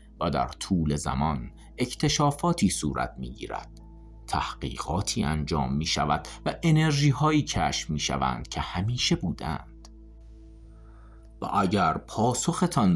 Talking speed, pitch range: 105 wpm, 70-100 Hz